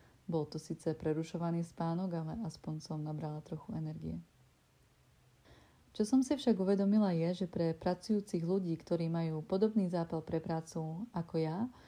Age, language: 30-49, Czech